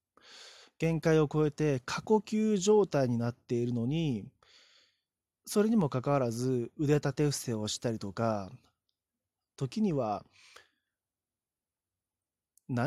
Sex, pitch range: male, 105-155 Hz